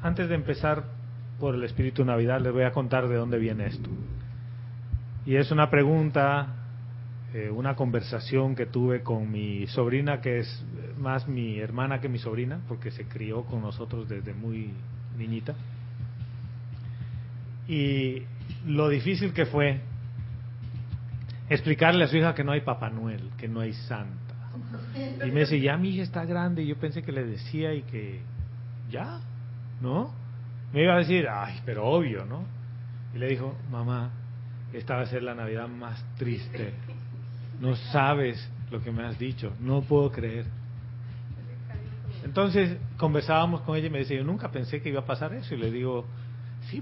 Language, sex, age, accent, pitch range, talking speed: Spanish, male, 30-49, Mexican, 120-135 Hz, 165 wpm